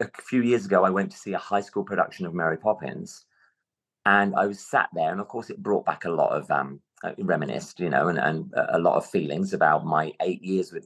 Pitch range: 85-105 Hz